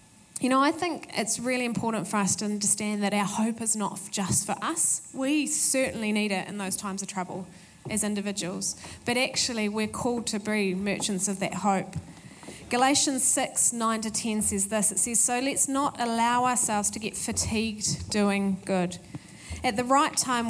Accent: Australian